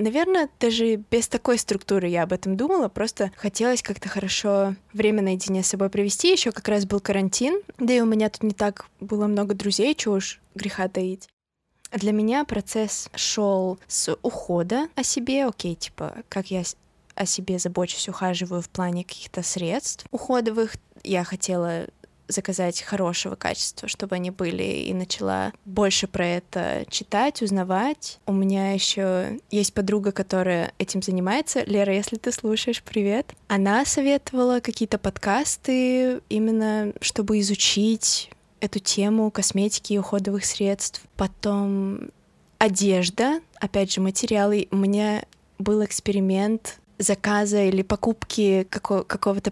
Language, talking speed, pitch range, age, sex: Russian, 135 wpm, 190-220 Hz, 20-39, female